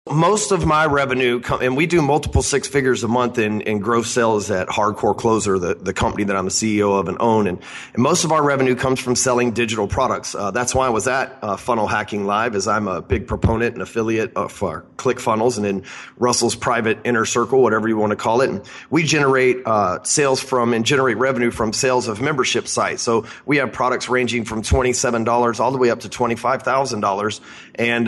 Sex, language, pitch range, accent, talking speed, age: male, English, 110-130 Hz, American, 215 wpm, 30-49